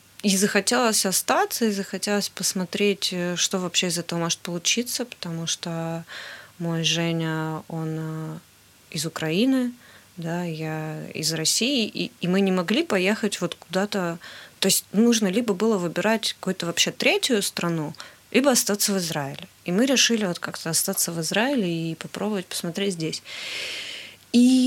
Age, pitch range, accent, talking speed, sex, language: 20-39, 170-220 Hz, native, 145 wpm, female, Russian